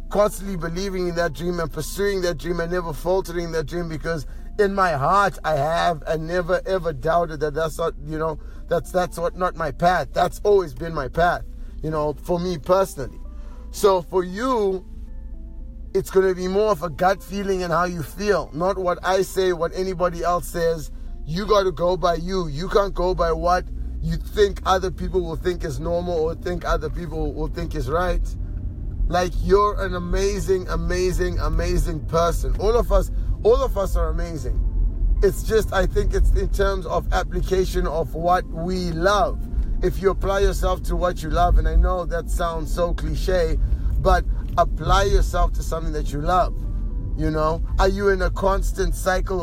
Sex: male